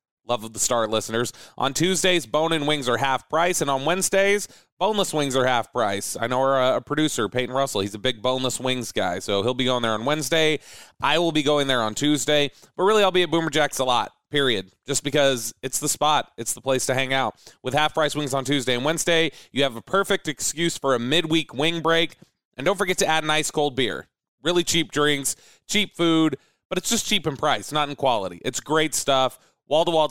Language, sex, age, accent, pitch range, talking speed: English, male, 30-49, American, 125-160 Hz, 225 wpm